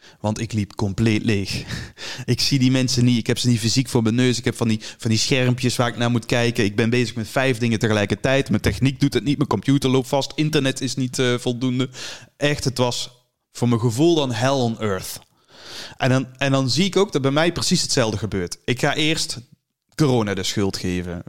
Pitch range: 115-165 Hz